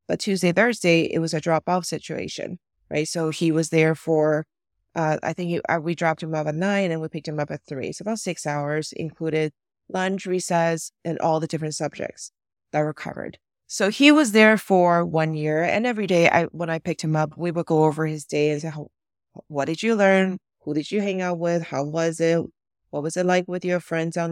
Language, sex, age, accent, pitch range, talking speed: English, female, 30-49, American, 155-185 Hz, 230 wpm